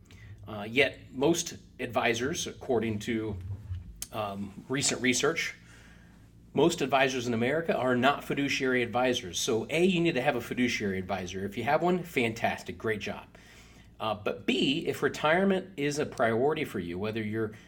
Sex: male